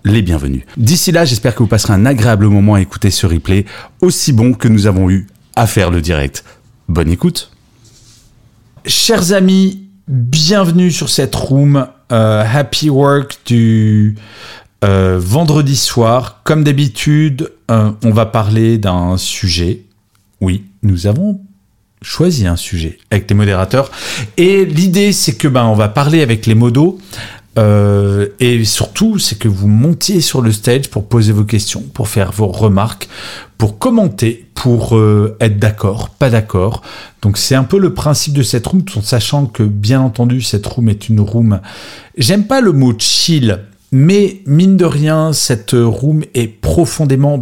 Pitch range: 105-145 Hz